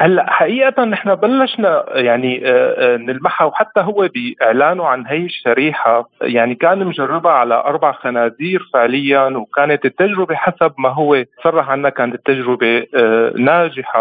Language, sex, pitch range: Arabic, male, 130-175 Hz